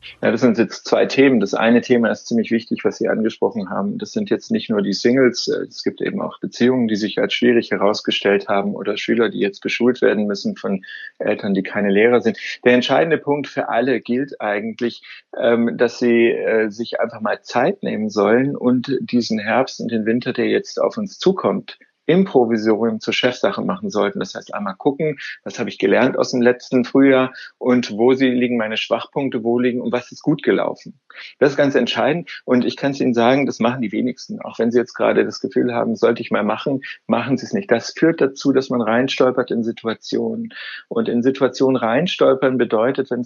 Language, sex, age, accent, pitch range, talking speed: German, male, 30-49, German, 115-135 Hz, 205 wpm